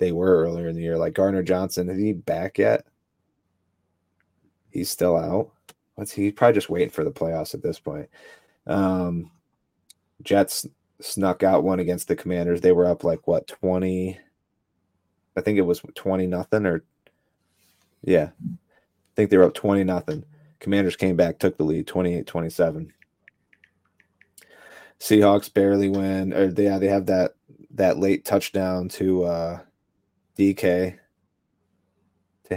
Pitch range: 90-95 Hz